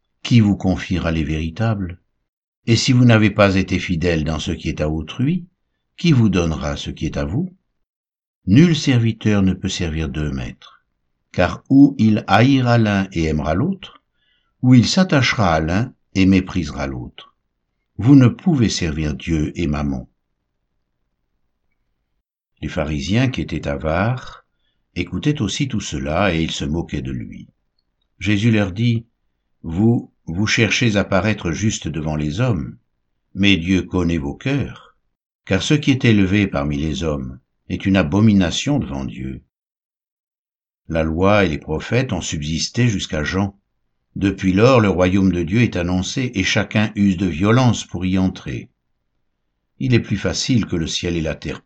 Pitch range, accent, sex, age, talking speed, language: 75-110 Hz, French, male, 60-79, 160 wpm, French